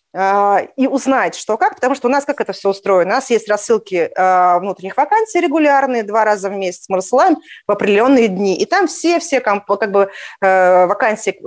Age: 20-39